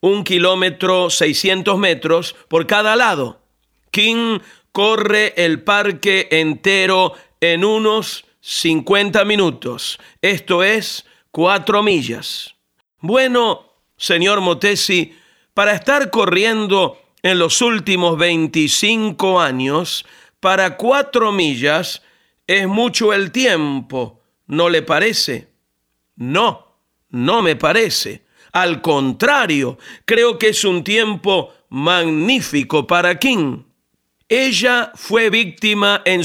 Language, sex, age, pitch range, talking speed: Spanish, male, 50-69, 175-220 Hz, 100 wpm